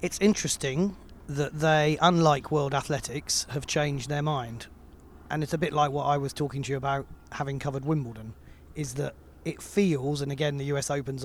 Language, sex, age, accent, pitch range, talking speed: English, male, 30-49, British, 130-155 Hz, 185 wpm